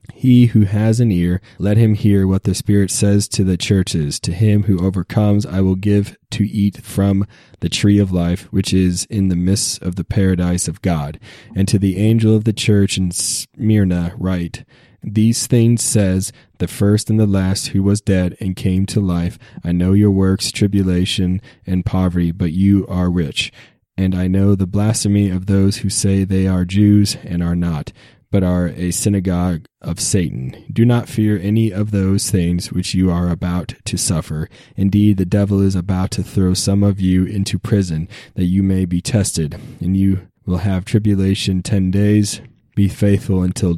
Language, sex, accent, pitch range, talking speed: English, male, American, 90-105 Hz, 185 wpm